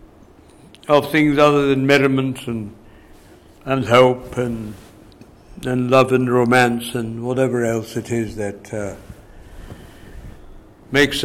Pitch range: 110-145 Hz